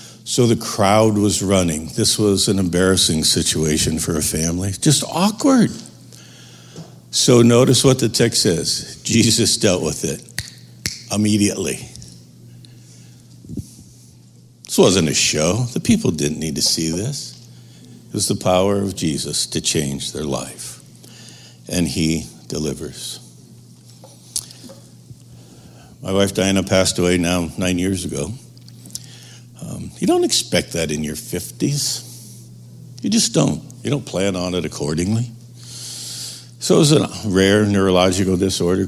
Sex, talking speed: male, 125 wpm